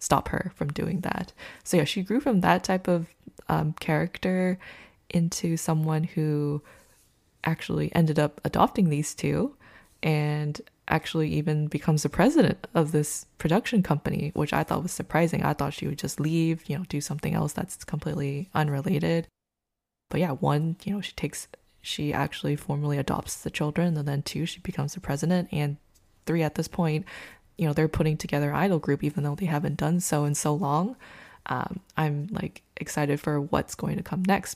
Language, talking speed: English, 180 wpm